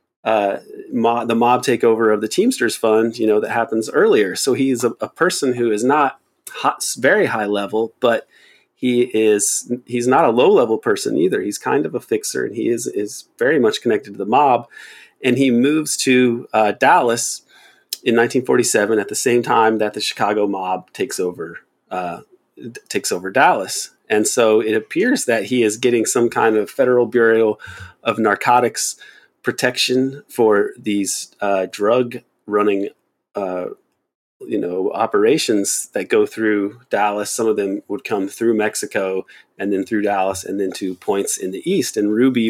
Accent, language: American, English